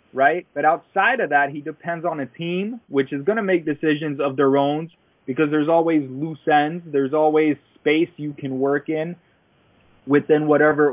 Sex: male